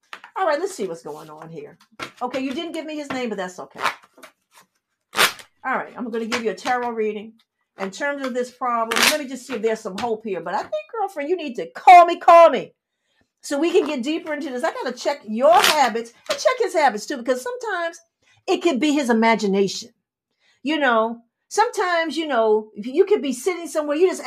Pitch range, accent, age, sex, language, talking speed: 210-295 Hz, American, 50-69, female, English, 225 wpm